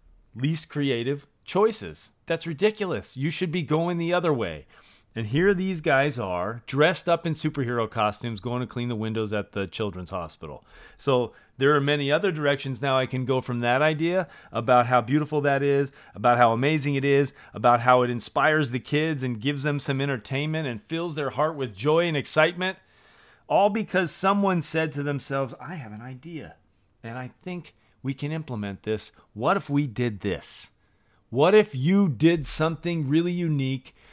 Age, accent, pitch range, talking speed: 40-59, American, 120-155 Hz, 180 wpm